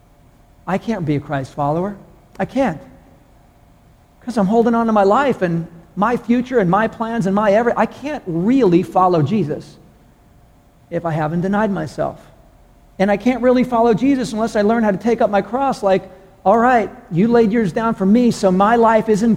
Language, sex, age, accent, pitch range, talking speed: English, male, 50-69, American, 165-210 Hz, 190 wpm